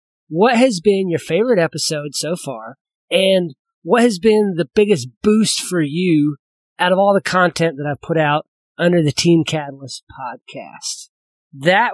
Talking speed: 160 wpm